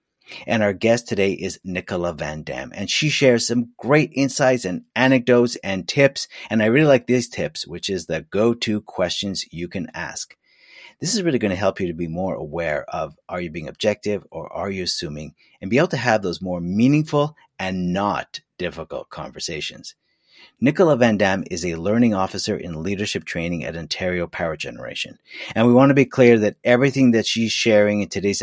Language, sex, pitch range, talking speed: English, male, 95-120 Hz, 190 wpm